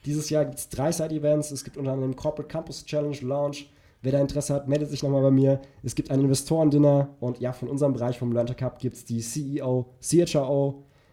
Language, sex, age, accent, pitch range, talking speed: German, male, 20-39, German, 130-145 Hz, 215 wpm